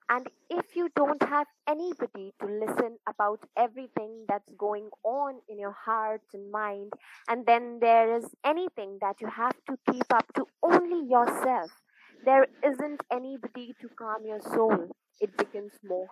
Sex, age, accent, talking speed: female, 20-39, native, 155 wpm